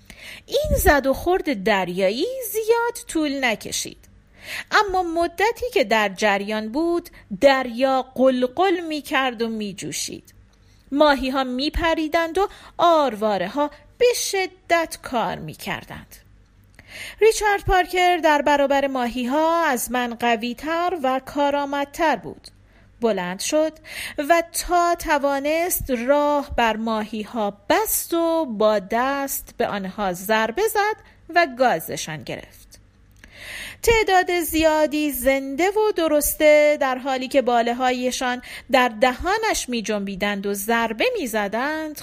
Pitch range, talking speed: 230-330 Hz, 115 wpm